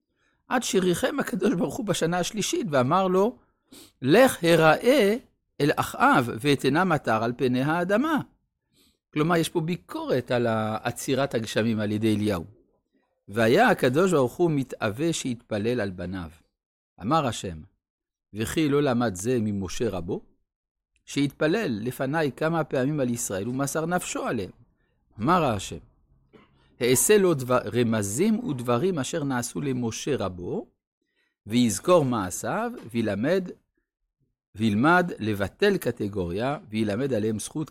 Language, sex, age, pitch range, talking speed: Hebrew, male, 60-79, 115-175 Hz, 115 wpm